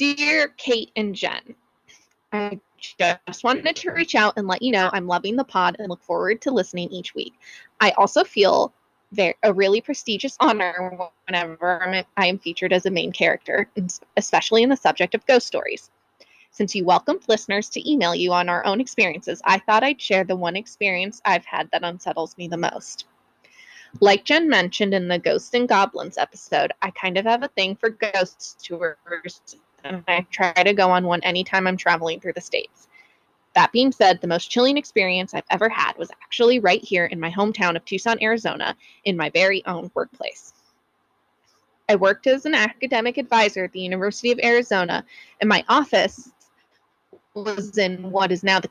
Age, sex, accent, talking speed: 20-39, female, American, 185 wpm